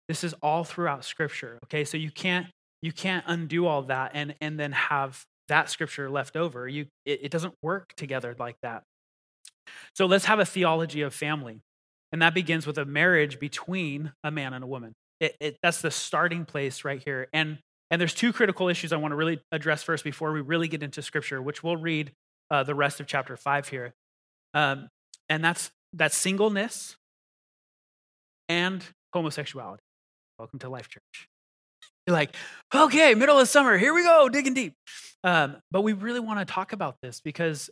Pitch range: 140-175 Hz